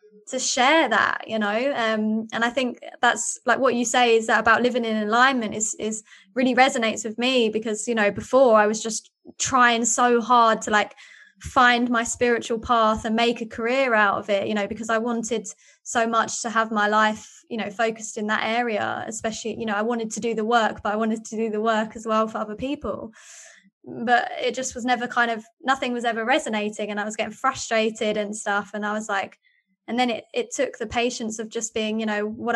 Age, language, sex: 20-39, English, female